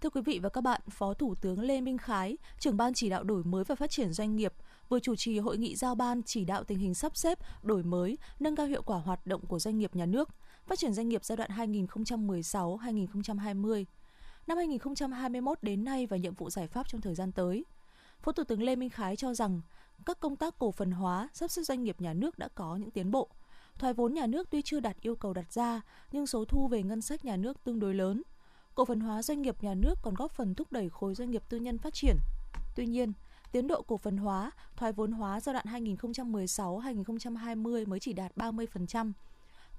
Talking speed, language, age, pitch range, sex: 230 wpm, Vietnamese, 20-39, 200-260 Hz, female